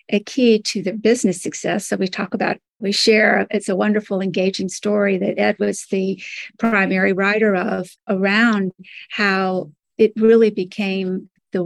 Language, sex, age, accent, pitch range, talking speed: English, female, 50-69, American, 190-220 Hz, 160 wpm